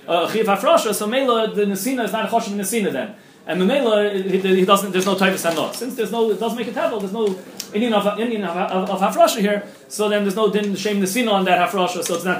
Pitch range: 175-215 Hz